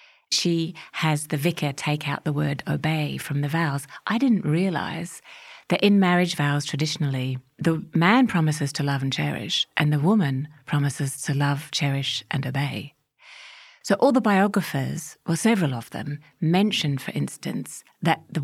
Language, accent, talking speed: English, British, 160 wpm